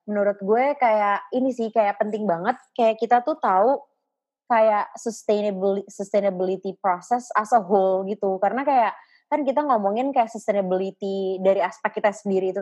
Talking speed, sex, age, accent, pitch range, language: 150 wpm, female, 20-39, native, 185-225 Hz, Indonesian